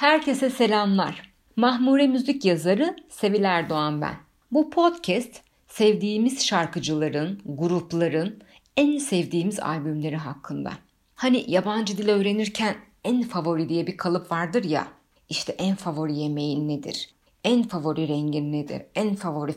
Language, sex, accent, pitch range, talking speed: Turkish, female, native, 160-225 Hz, 120 wpm